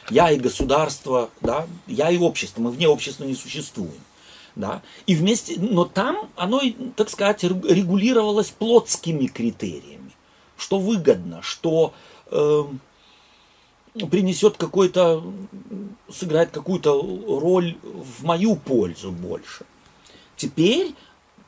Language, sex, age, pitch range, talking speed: Russian, male, 40-59, 120-200 Hz, 100 wpm